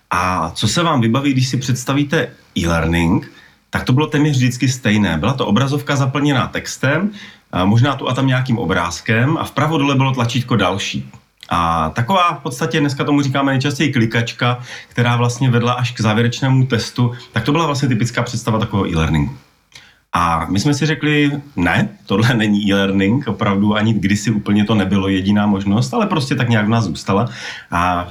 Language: Slovak